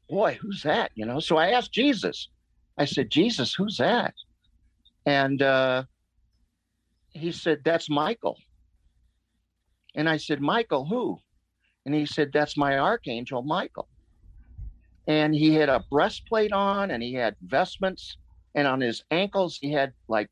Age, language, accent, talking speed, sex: 50-69, English, American, 145 wpm, male